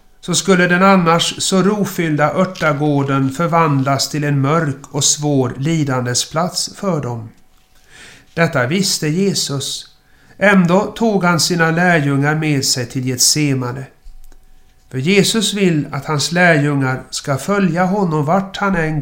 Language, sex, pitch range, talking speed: Swedish, male, 135-180 Hz, 125 wpm